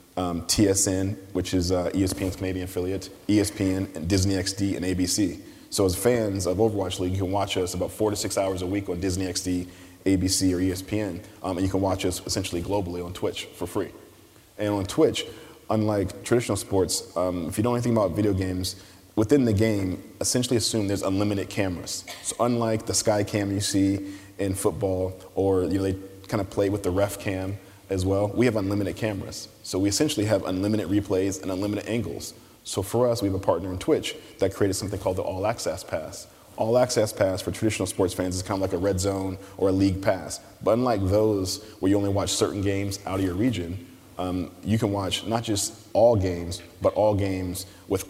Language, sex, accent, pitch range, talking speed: English, male, American, 95-105 Hz, 205 wpm